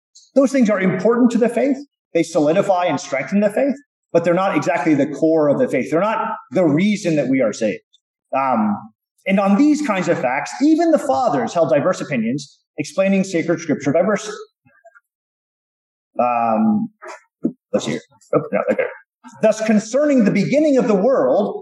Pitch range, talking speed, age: 165-245 Hz, 165 wpm, 30-49